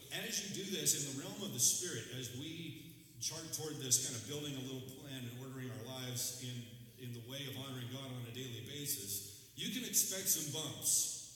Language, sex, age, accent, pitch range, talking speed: English, male, 40-59, American, 120-150 Hz, 215 wpm